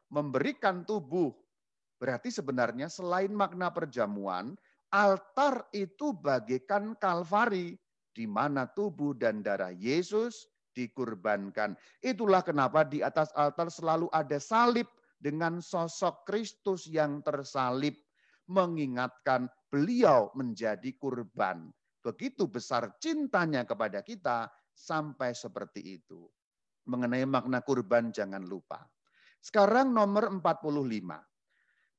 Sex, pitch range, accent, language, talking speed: male, 125-195 Hz, native, Indonesian, 95 wpm